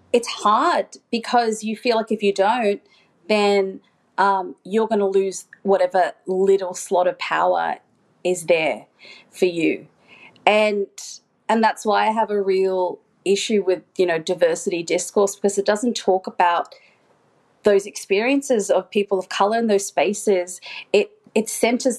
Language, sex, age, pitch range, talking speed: English, female, 30-49, 185-225 Hz, 150 wpm